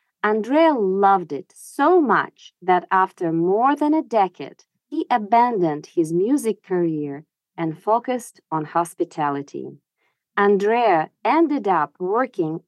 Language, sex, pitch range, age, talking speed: English, female, 170-240 Hz, 40-59, 115 wpm